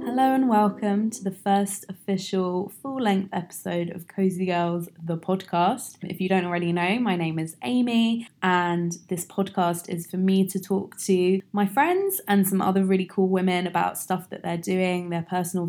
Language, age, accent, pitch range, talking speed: English, 20-39, British, 175-200 Hz, 185 wpm